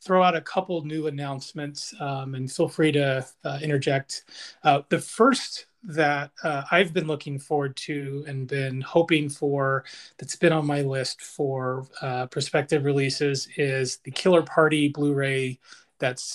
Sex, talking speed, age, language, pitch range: male, 160 wpm, 30-49, English, 145-170 Hz